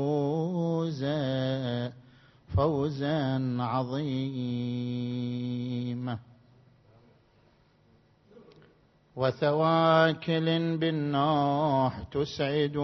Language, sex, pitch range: Arabic, male, 135-165 Hz